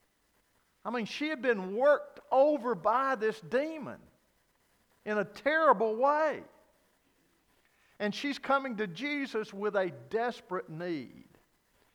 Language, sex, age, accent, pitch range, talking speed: English, male, 50-69, American, 140-220 Hz, 115 wpm